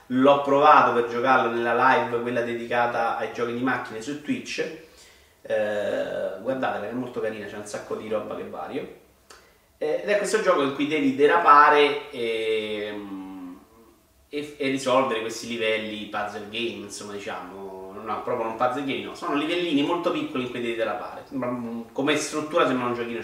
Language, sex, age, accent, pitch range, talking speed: Italian, male, 30-49, native, 115-150 Hz, 170 wpm